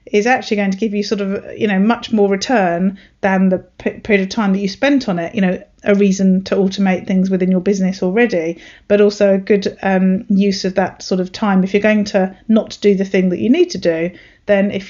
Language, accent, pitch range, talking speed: English, British, 190-210 Hz, 245 wpm